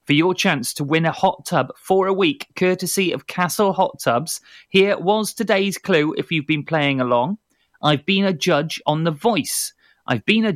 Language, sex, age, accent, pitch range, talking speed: English, male, 30-49, British, 140-195 Hz, 200 wpm